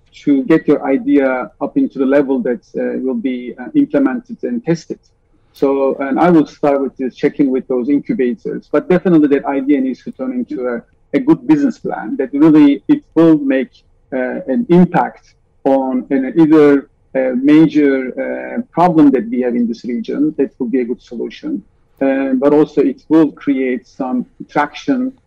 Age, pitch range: 50-69, 130-175 Hz